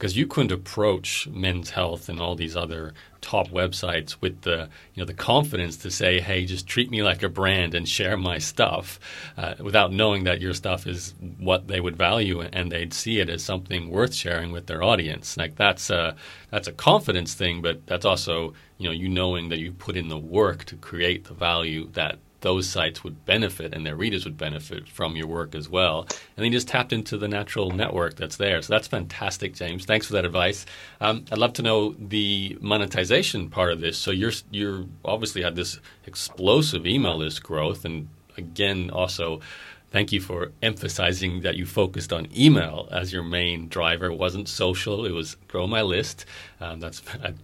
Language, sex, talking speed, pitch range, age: English, male, 200 wpm, 85-100 Hz, 40-59